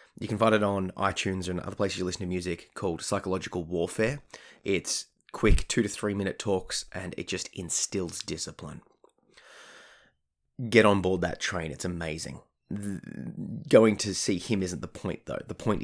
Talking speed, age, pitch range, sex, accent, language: 175 wpm, 20-39, 90-105 Hz, male, Australian, English